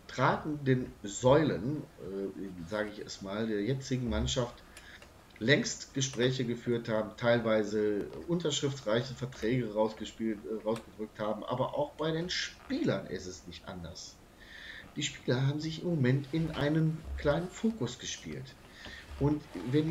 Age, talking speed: 40-59, 130 wpm